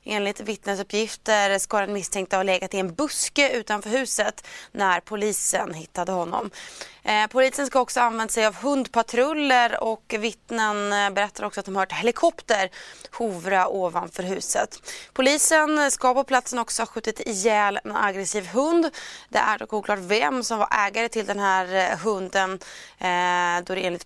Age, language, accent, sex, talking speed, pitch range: 20-39, Swedish, native, female, 155 wpm, 190-240 Hz